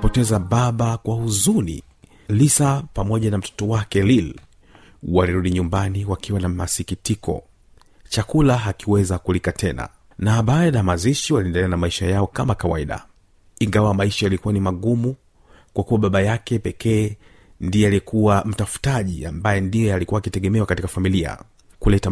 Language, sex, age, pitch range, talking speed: Swahili, male, 40-59, 95-115 Hz, 135 wpm